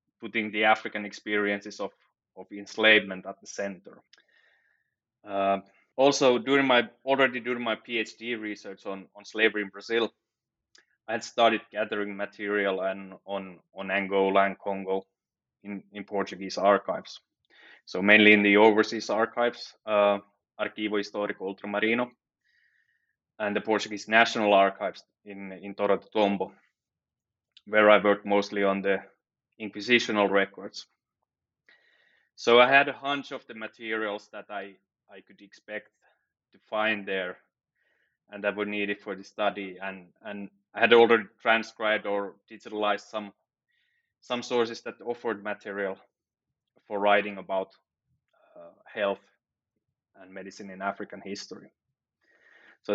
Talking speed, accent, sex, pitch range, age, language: 135 wpm, Finnish, male, 100-115 Hz, 20-39, English